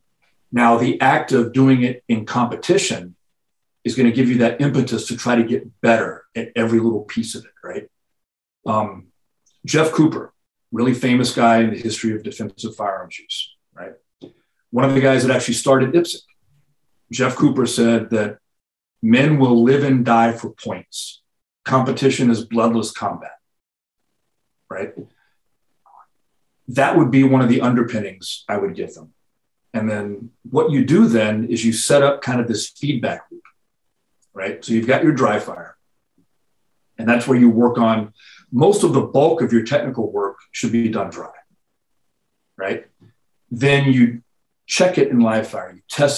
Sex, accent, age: male, American, 40-59